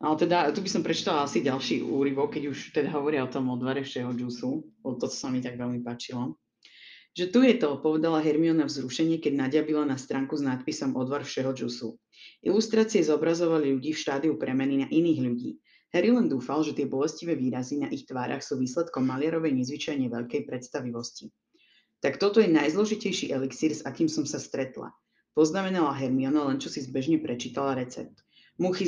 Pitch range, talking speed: 135-180 Hz, 175 wpm